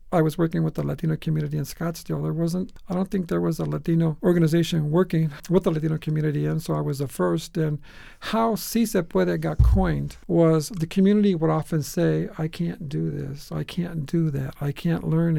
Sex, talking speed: male, 210 wpm